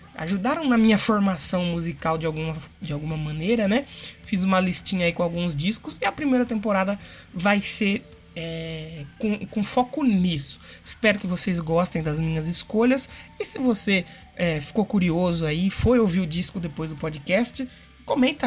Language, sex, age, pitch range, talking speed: Portuguese, male, 20-39, 165-220 Hz, 165 wpm